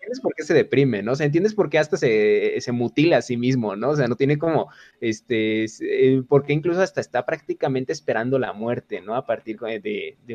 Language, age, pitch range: Spanish, 20-39, 120-165 Hz